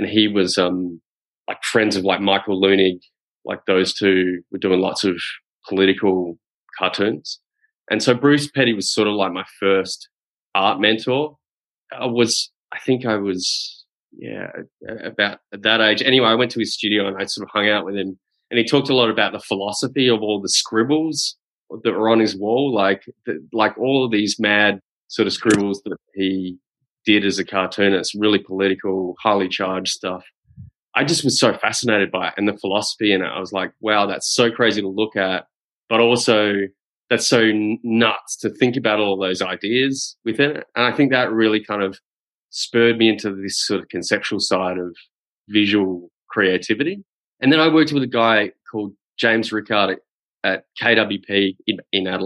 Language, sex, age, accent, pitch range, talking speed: English, male, 20-39, Australian, 95-115 Hz, 190 wpm